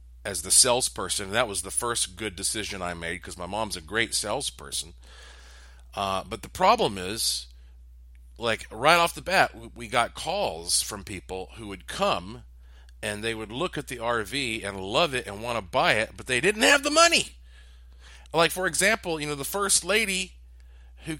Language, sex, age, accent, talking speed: English, male, 40-59, American, 185 wpm